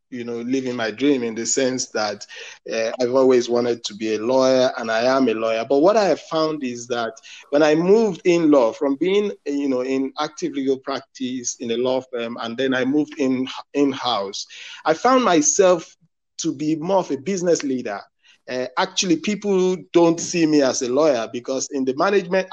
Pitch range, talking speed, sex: 130-190 Hz, 200 wpm, male